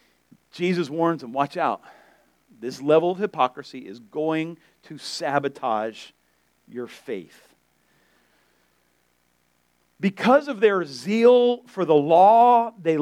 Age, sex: 50-69, male